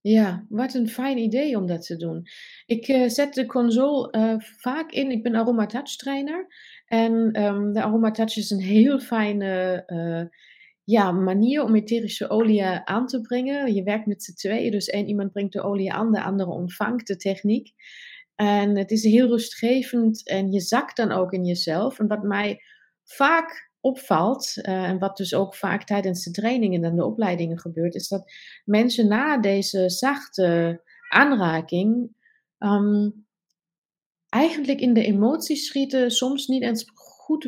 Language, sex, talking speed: Dutch, female, 160 wpm